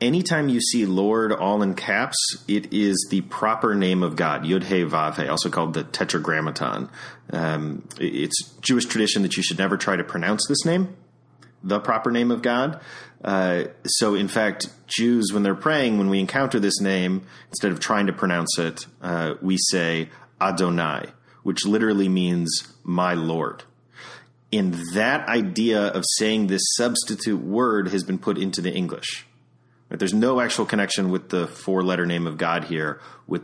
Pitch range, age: 90-120 Hz, 30-49